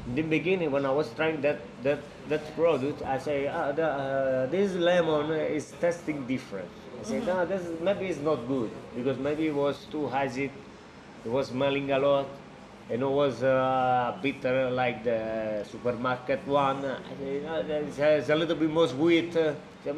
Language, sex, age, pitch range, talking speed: English, male, 30-49, 120-155 Hz, 170 wpm